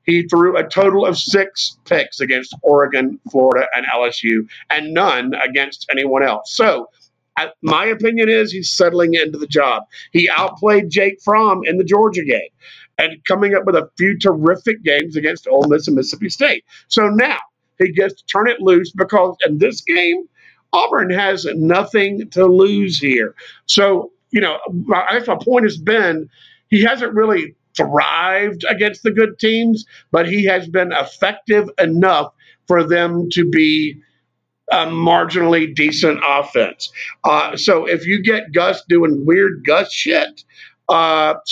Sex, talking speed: male, 160 wpm